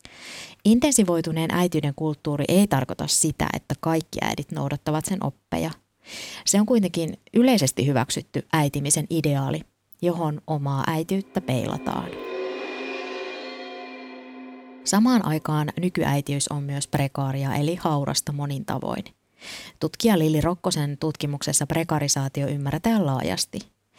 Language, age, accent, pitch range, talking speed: Finnish, 20-39, native, 140-170 Hz, 100 wpm